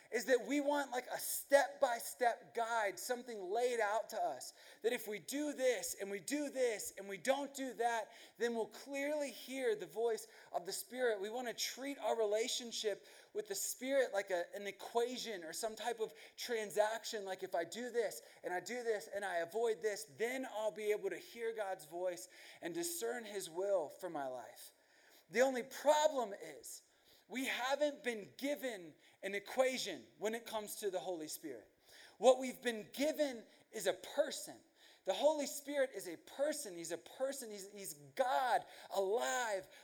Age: 30-49